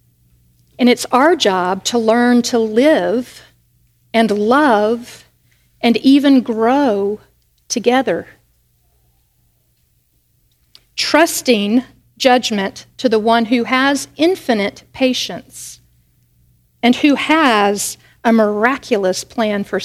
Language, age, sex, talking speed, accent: English, 50-69, female, 90 wpm, American